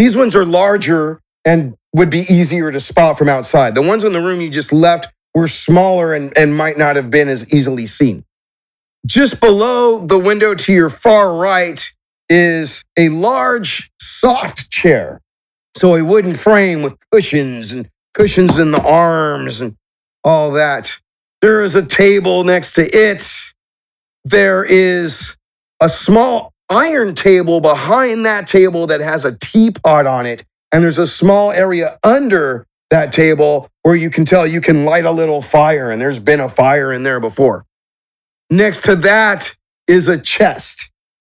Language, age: English, 40-59